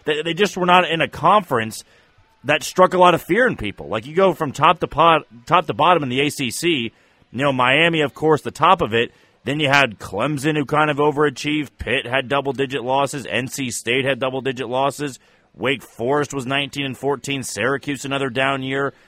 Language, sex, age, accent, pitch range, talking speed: English, male, 30-49, American, 135-165 Hz, 200 wpm